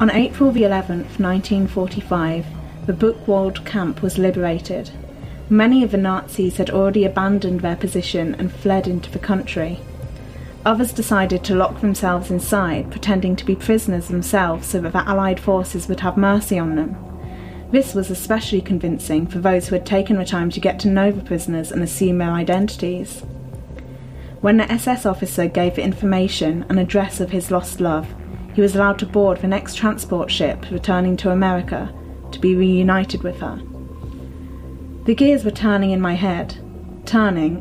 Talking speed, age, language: 165 wpm, 30-49, English